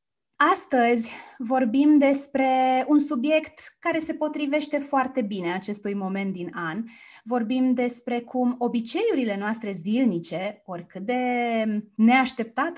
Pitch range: 190-255 Hz